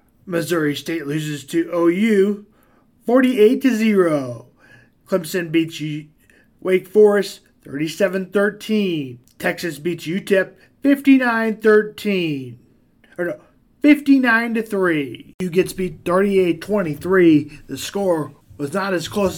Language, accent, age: English, American, 20-39